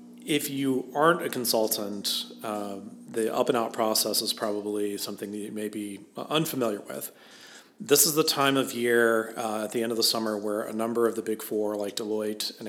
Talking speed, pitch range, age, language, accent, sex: 205 wpm, 105-120 Hz, 40-59, English, American, male